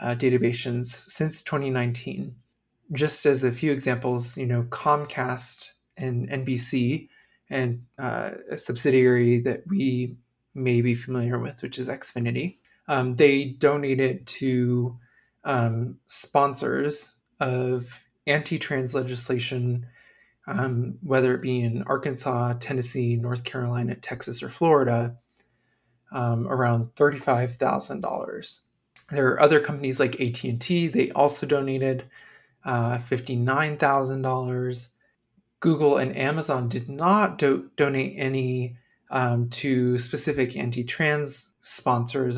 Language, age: English, 20-39